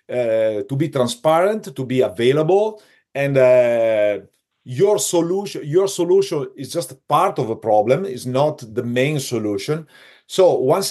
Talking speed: 145 wpm